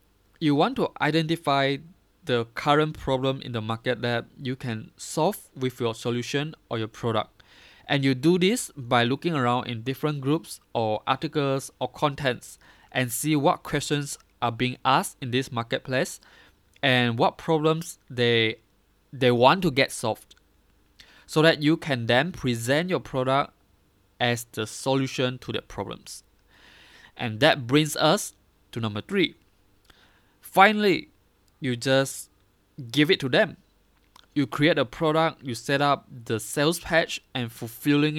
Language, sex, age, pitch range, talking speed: English, male, 20-39, 115-145 Hz, 145 wpm